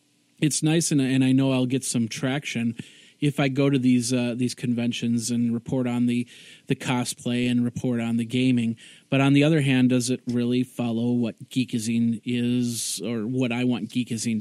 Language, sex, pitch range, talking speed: English, male, 115-130 Hz, 190 wpm